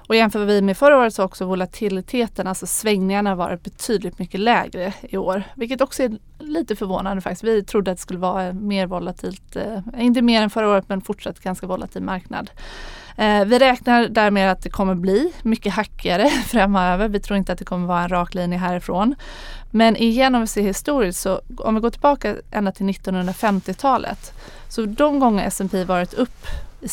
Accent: native